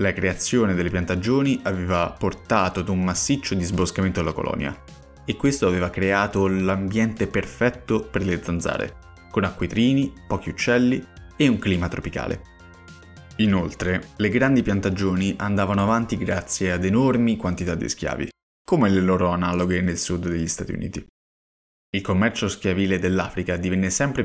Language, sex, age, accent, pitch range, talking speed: Italian, male, 20-39, native, 90-105 Hz, 140 wpm